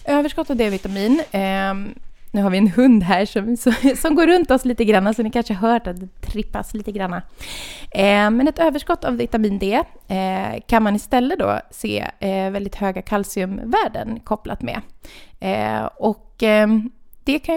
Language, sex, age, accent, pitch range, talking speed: Swedish, female, 20-39, native, 200-255 Hz, 155 wpm